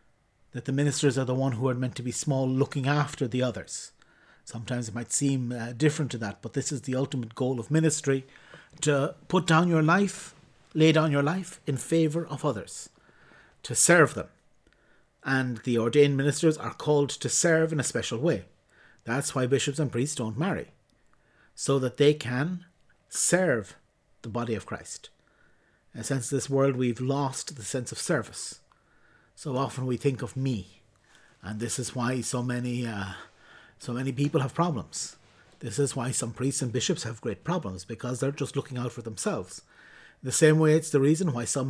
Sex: male